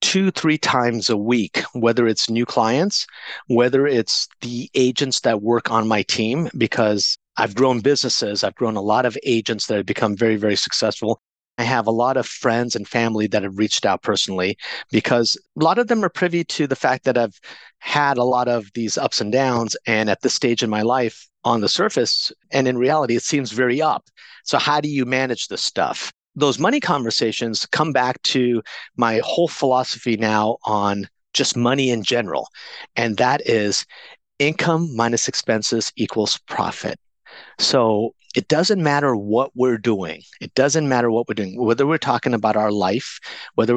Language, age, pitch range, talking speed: English, 50-69, 110-130 Hz, 185 wpm